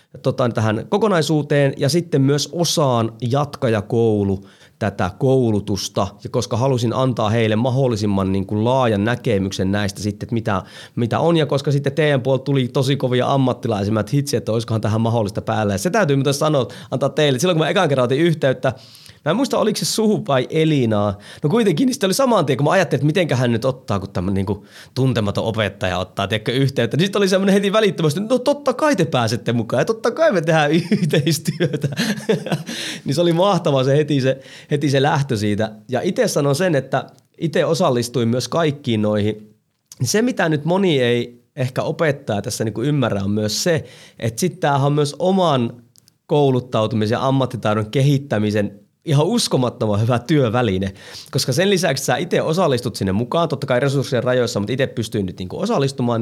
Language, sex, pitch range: Finnish, male, 115-155 Hz